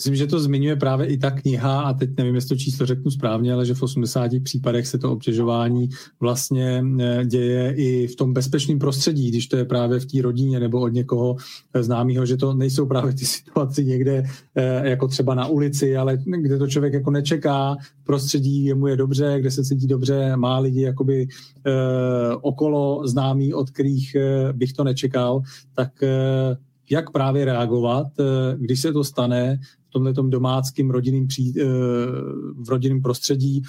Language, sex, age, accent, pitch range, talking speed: Czech, male, 40-59, native, 125-140 Hz, 165 wpm